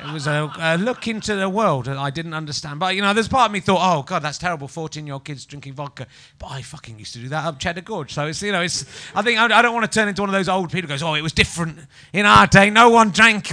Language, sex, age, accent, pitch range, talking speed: English, male, 30-49, British, 140-195 Hz, 300 wpm